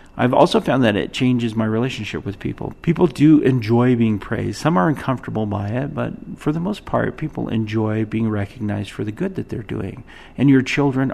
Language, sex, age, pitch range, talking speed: English, male, 40-59, 105-125 Hz, 205 wpm